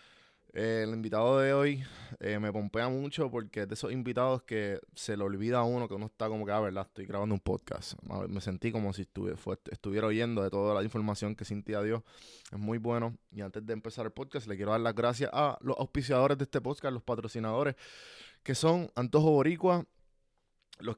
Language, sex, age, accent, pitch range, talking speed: Spanish, male, 20-39, Venezuelan, 105-125 Hz, 205 wpm